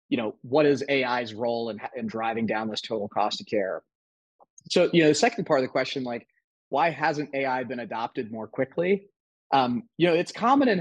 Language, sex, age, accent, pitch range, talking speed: English, male, 30-49, American, 130-155 Hz, 210 wpm